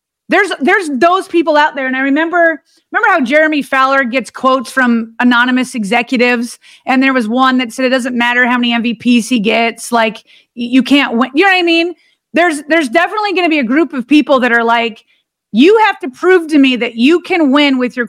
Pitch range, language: 245-320 Hz, English